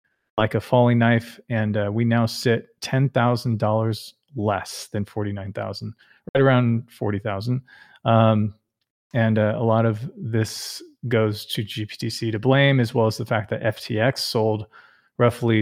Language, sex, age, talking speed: English, male, 30-49, 140 wpm